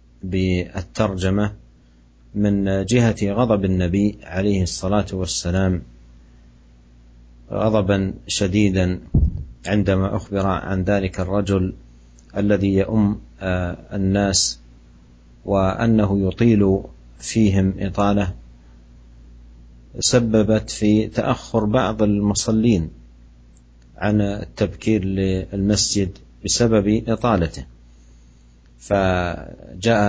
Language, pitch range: Malay, 80-105 Hz